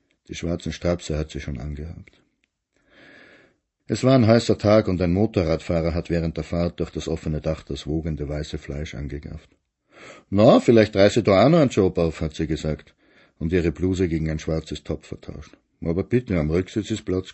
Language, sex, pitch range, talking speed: German, male, 80-110 Hz, 185 wpm